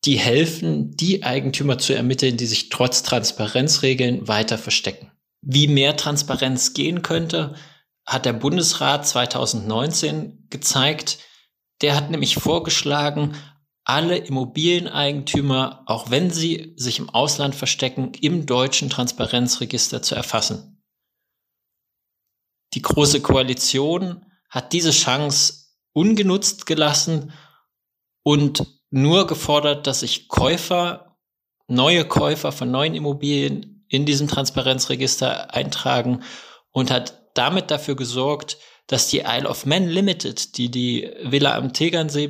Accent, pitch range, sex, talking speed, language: German, 130-155 Hz, male, 110 wpm, German